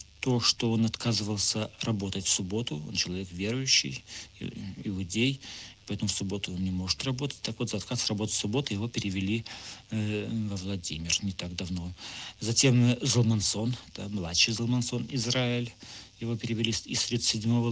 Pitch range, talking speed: 100-125 Hz, 140 wpm